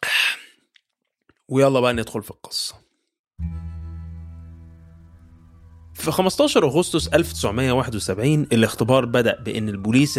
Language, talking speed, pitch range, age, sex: Arabic, 75 wpm, 110-155 Hz, 20-39, male